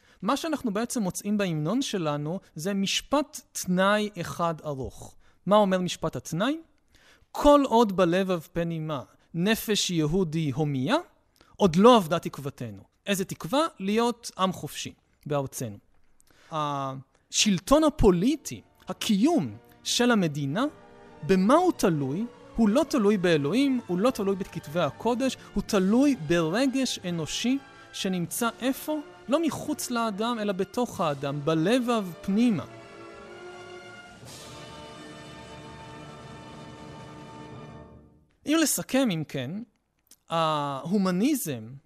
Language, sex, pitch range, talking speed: Hebrew, male, 150-240 Hz, 100 wpm